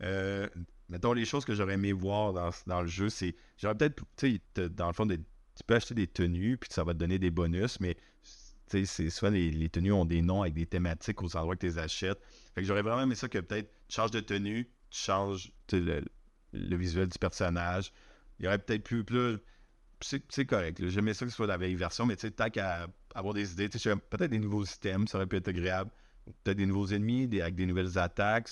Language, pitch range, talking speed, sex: French, 90-105 Hz, 235 wpm, male